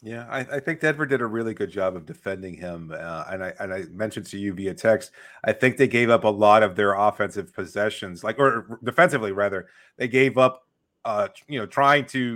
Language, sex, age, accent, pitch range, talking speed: English, male, 30-49, American, 105-135 Hz, 230 wpm